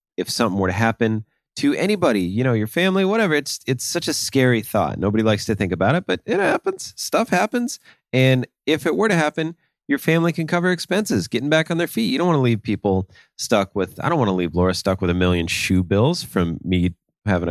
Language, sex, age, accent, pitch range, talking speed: English, male, 30-49, American, 95-130 Hz, 235 wpm